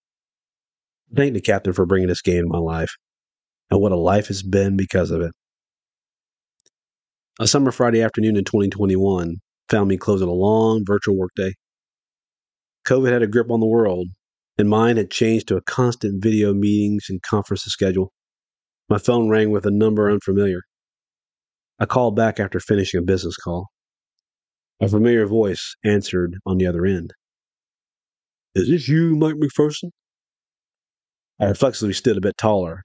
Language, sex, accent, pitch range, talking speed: English, male, American, 95-115 Hz, 155 wpm